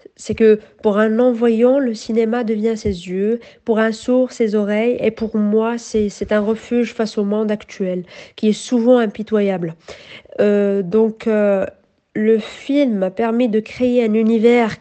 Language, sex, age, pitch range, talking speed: Italian, female, 40-59, 215-250 Hz, 160 wpm